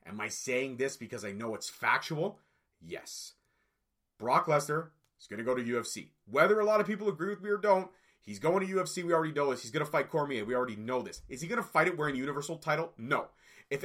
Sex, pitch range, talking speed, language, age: male, 130-165 Hz, 245 wpm, English, 30-49